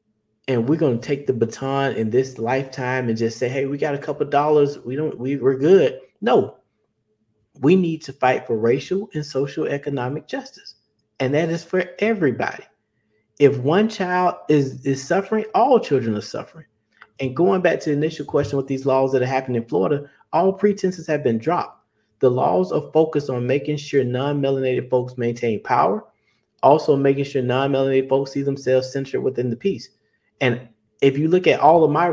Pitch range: 130-165 Hz